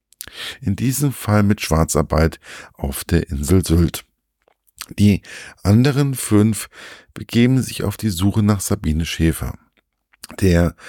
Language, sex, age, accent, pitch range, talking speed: German, male, 50-69, German, 85-105 Hz, 115 wpm